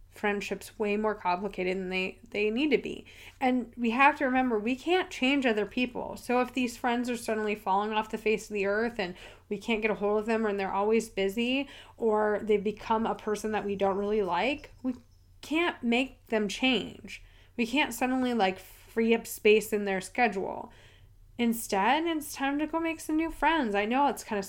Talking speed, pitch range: 205 wpm, 195-245 Hz